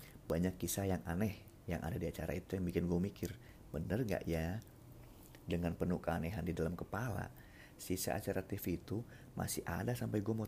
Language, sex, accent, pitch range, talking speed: Indonesian, male, native, 90-115 Hz, 180 wpm